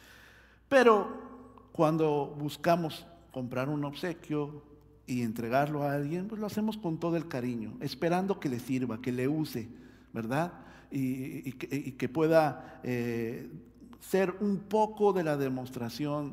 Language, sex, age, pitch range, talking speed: Spanish, male, 50-69, 120-190 Hz, 130 wpm